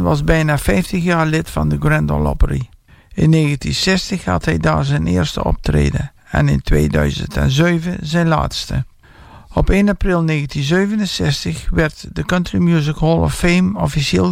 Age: 60-79